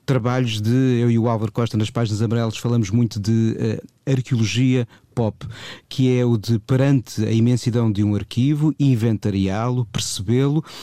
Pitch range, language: 110-130 Hz, Portuguese